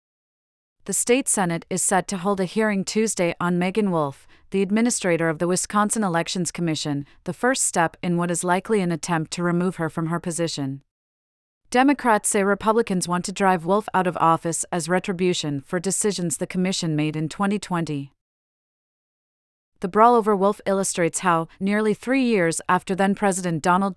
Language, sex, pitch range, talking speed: English, female, 165-200 Hz, 165 wpm